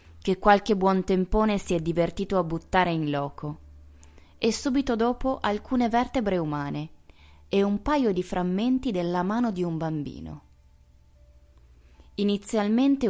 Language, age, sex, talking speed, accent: Italian, 20-39, female, 130 wpm, native